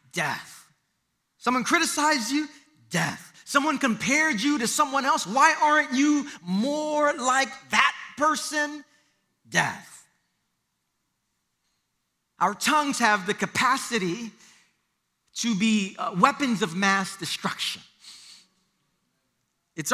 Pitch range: 230-310 Hz